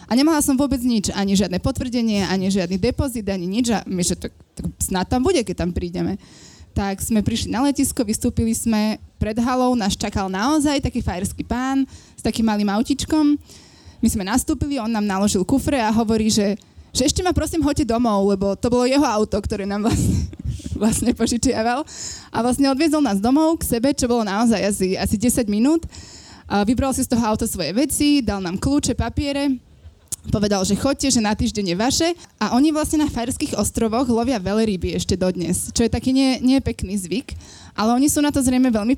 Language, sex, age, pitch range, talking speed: Slovak, female, 20-39, 205-265 Hz, 190 wpm